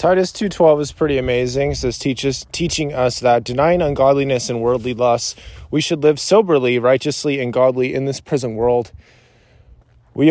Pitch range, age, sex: 115-135 Hz, 20-39, male